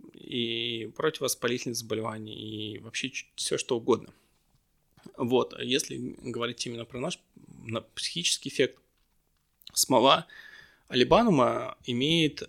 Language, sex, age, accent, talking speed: Russian, male, 20-39, native, 95 wpm